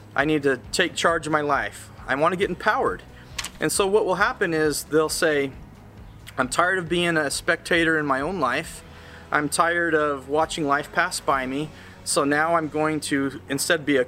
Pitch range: 120-155 Hz